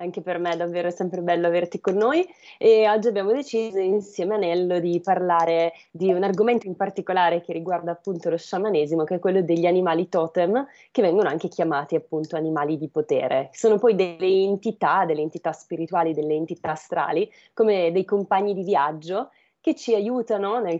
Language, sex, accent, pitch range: Italian, female, native, 170-205 Hz